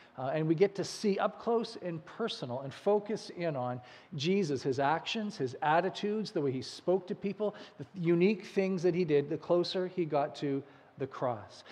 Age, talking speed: 40-59, 195 wpm